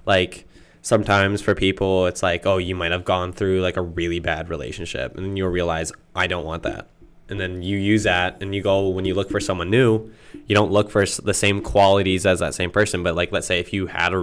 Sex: male